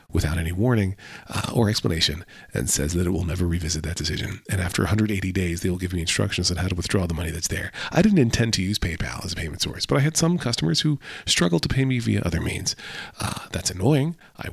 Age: 40-59